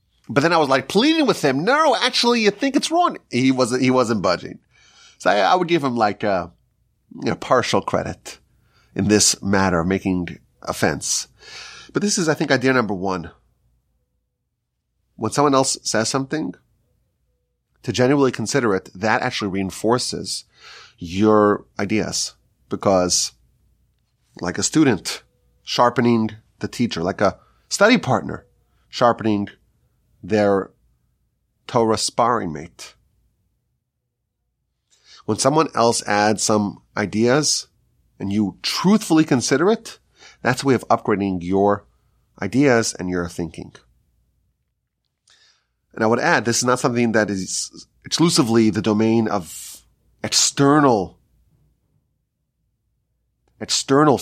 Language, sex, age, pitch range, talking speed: English, male, 30-49, 100-135 Hz, 125 wpm